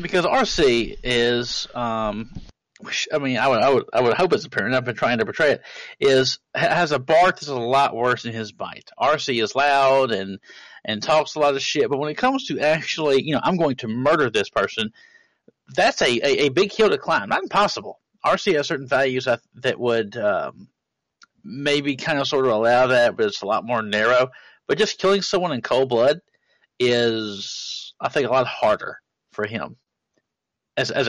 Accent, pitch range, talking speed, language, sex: American, 120-150 Hz, 200 wpm, English, male